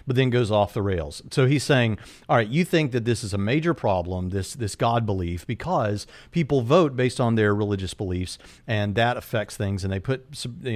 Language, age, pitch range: English, 40-59, 105-135 Hz